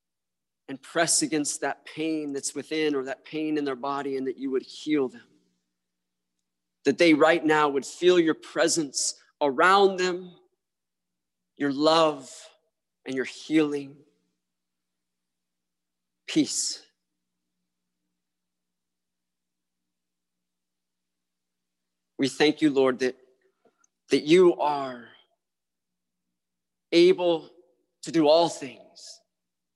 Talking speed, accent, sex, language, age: 95 wpm, American, male, English, 40-59